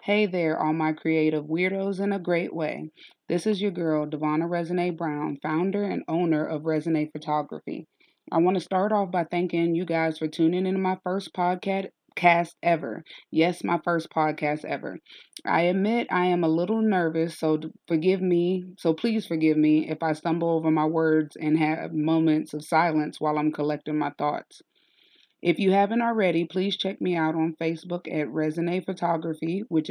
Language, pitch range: English, 155-180 Hz